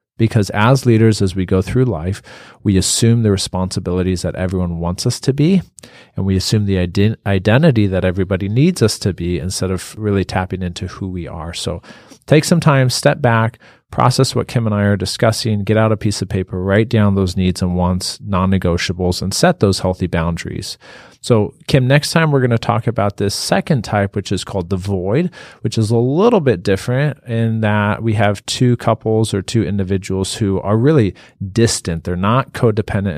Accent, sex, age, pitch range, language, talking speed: American, male, 40-59, 95-120 Hz, English, 190 wpm